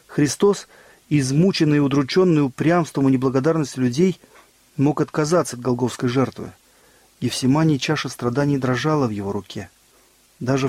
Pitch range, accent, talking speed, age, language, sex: 125-155 Hz, native, 125 wpm, 40-59, Russian, male